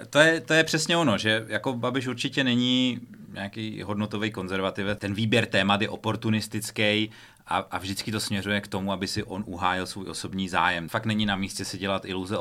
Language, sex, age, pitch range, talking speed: Czech, male, 30-49, 95-110 Hz, 195 wpm